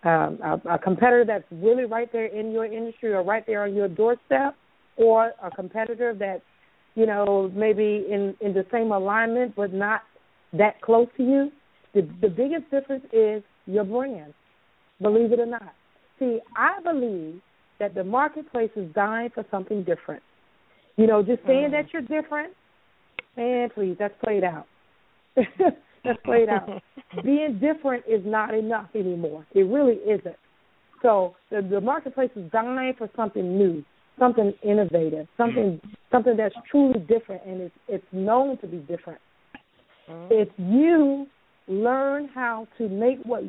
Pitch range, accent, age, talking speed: 200-250 Hz, American, 40-59, 155 wpm